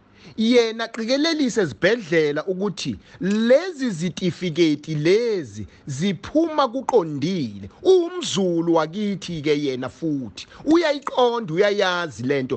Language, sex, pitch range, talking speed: English, male, 145-210 Hz, 115 wpm